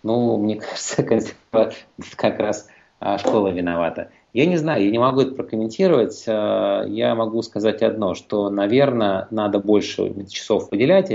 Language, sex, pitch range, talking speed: Russian, male, 95-110 Hz, 135 wpm